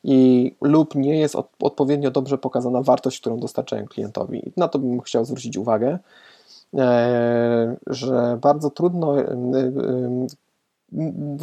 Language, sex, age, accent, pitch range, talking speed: Polish, male, 20-39, native, 125-145 Hz, 115 wpm